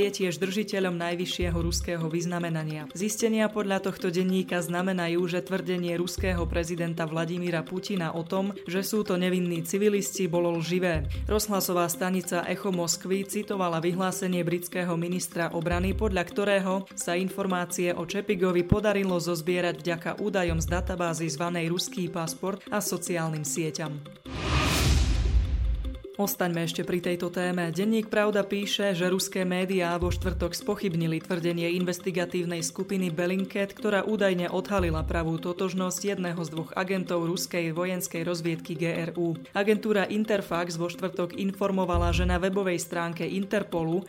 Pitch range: 170-190 Hz